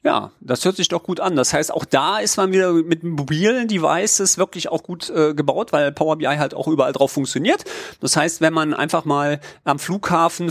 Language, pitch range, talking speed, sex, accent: German, 140-185 Hz, 215 wpm, male, German